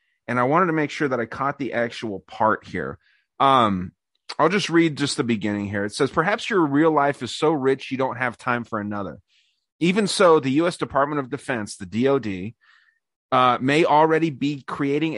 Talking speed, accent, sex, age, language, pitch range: 200 wpm, American, male, 30-49, English, 115-145 Hz